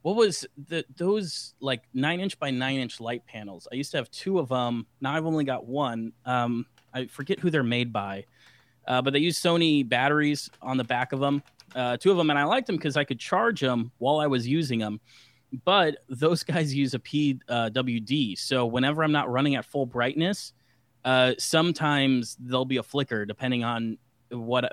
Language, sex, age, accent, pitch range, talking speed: English, male, 30-49, American, 120-145 Hz, 200 wpm